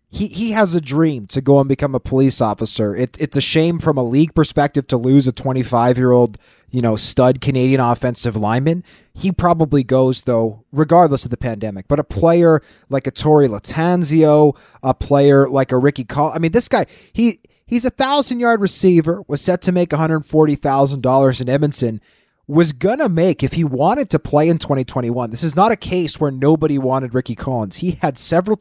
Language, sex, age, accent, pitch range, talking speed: English, male, 30-49, American, 130-175 Hz, 190 wpm